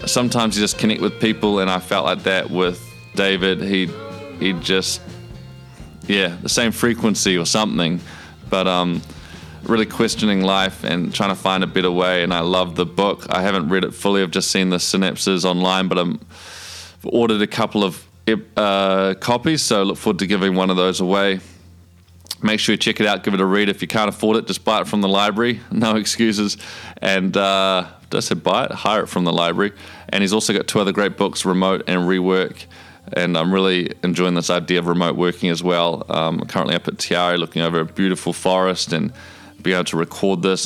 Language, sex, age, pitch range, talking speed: English, male, 20-39, 90-100 Hz, 205 wpm